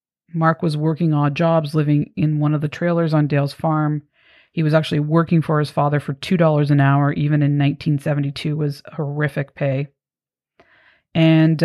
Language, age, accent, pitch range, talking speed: English, 30-49, American, 145-165 Hz, 165 wpm